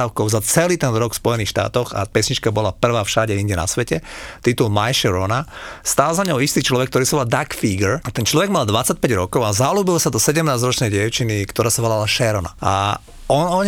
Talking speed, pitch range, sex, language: 200 wpm, 110-145 Hz, male, Slovak